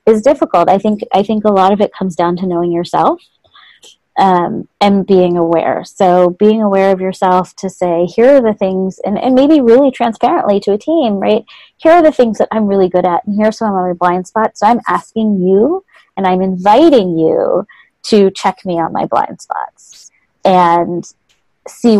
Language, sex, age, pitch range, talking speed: English, female, 20-39, 185-220 Hz, 195 wpm